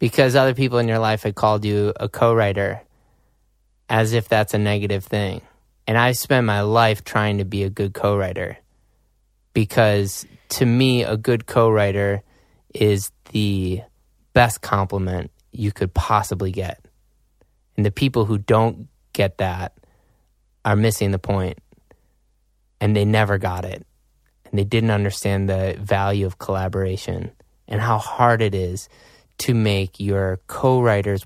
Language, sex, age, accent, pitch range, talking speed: English, male, 20-39, American, 100-115 Hz, 145 wpm